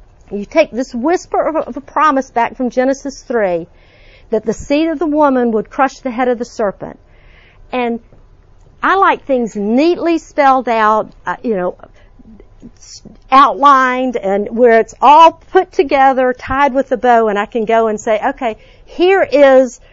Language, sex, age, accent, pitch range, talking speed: English, female, 50-69, American, 230-310 Hz, 165 wpm